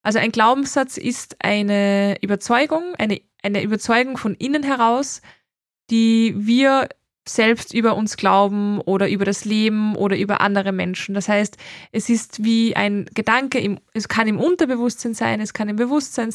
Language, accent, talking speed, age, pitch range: German, German, 155 wpm, 20-39, 205-240 Hz